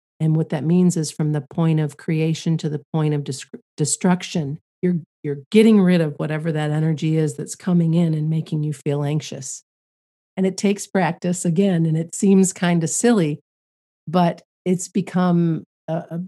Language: English